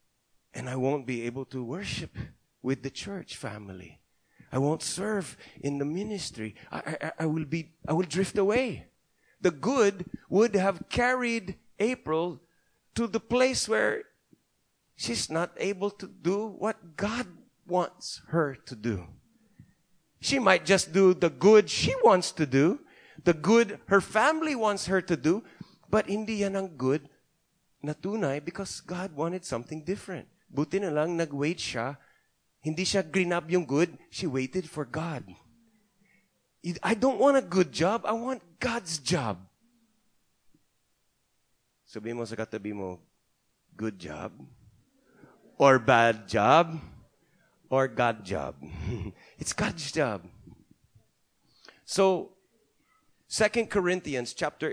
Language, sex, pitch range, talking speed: English, male, 135-195 Hz, 135 wpm